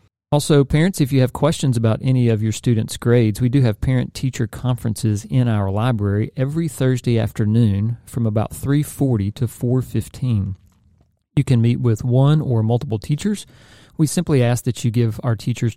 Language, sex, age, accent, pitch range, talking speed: English, male, 40-59, American, 110-130 Hz, 170 wpm